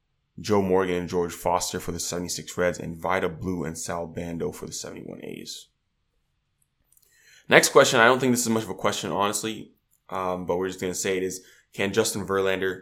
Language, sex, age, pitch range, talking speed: English, male, 20-39, 90-100 Hz, 195 wpm